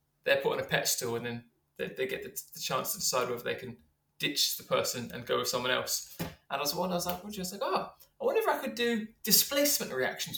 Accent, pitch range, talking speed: British, 120-165 Hz, 250 wpm